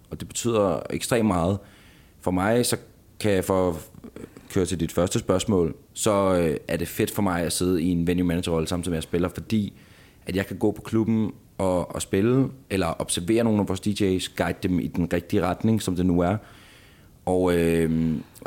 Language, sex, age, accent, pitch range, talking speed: Danish, male, 30-49, native, 85-105 Hz, 200 wpm